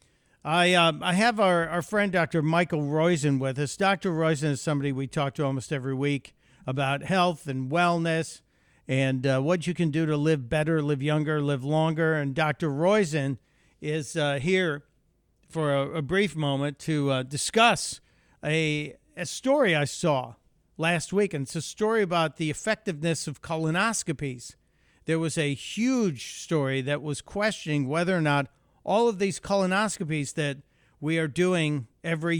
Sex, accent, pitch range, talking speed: male, American, 140-175 Hz, 165 wpm